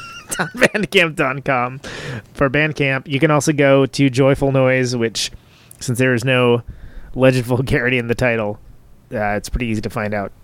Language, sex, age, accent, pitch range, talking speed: English, male, 30-49, American, 120-165 Hz, 155 wpm